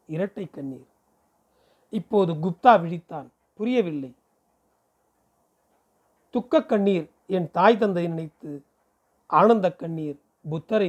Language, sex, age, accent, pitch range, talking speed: Tamil, male, 40-59, native, 165-220 Hz, 85 wpm